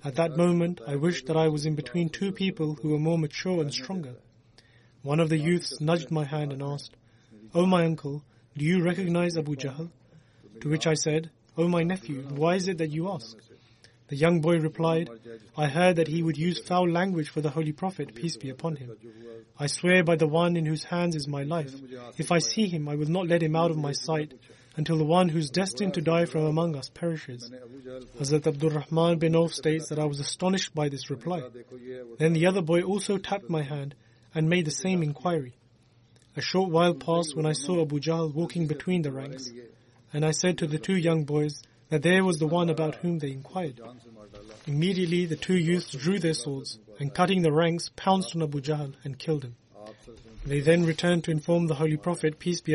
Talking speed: 210 wpm